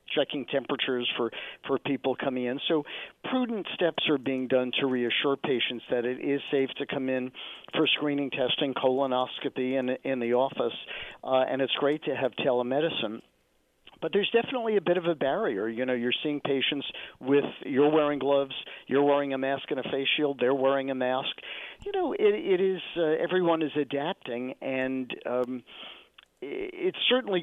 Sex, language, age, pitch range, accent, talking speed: male, English, 50-69, 125-150 Hz, American, 175 wpm